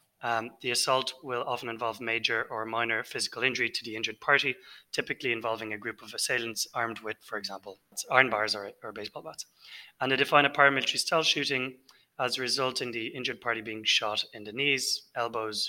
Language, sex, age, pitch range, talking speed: English, male, 30-49, 105-130 Hz, 190 wpm